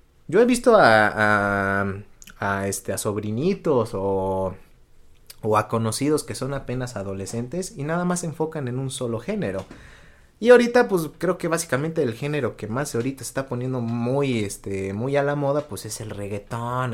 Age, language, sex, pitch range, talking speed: 30-49, Spanish, male, 105-150 Hz, 175 wpm